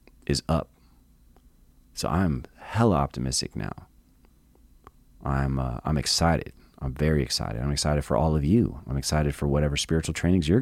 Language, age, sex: English, 30-49, male